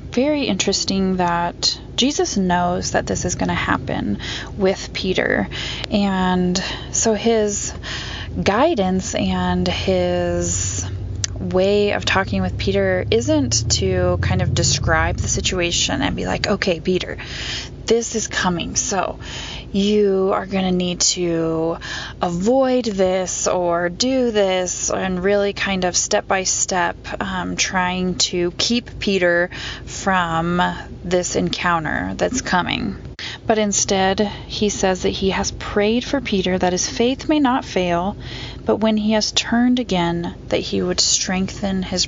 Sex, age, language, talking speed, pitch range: female, 20-39, English, 135 wpm, 175-215 Hz